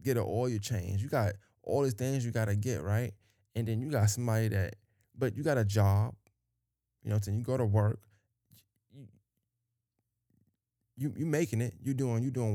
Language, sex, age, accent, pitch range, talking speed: English, male, 20-39, American, 105-120 Hz, 195 wpm